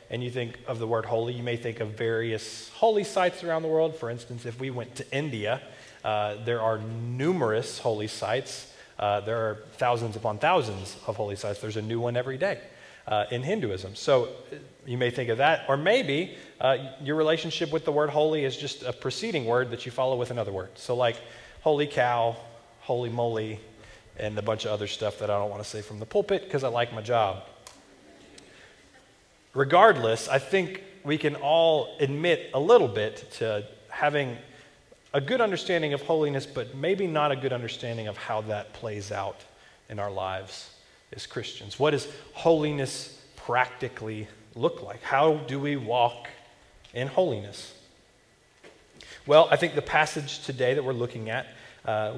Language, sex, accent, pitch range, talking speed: English, male, American, 110-145 Hz, 180 wpm